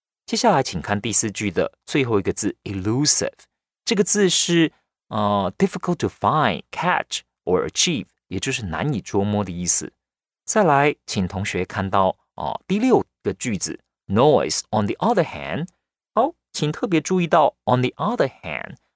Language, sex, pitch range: Chinese, male, 105-175 Hz